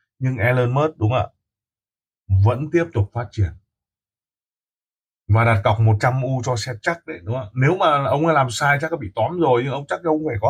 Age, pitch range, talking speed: 20-39, 105-135 Hz, 230 wpm